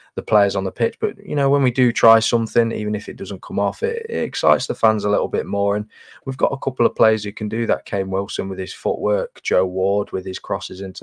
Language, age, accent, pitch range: English, 20-39, British, 95-110 Hz